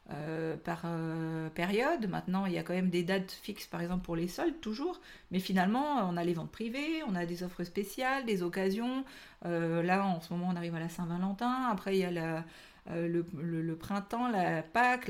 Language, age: French, 40-59